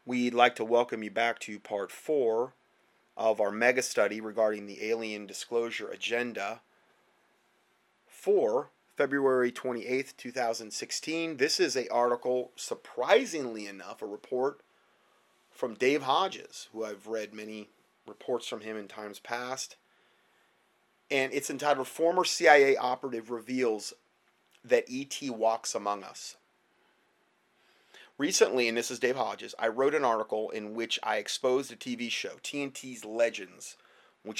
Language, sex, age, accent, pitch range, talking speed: English, male, 30-49, American, 110-130 Hz, 130 wpm